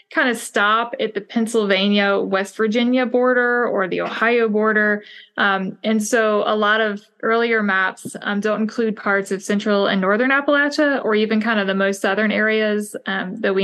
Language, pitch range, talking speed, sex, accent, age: English, 200-230 Hz, 175 wpm, female, American, 20-39